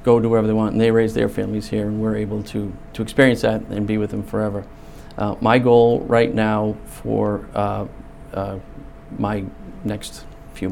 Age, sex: 40-59, male